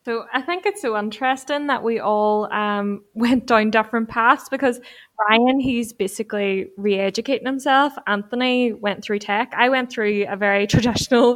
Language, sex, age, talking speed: English, female, 20-39, 160 wpm